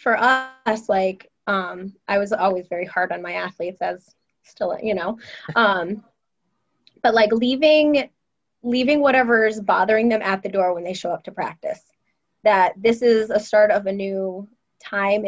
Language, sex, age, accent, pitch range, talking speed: English, female, 20-39, American, 190-215 Hz, 165 wpm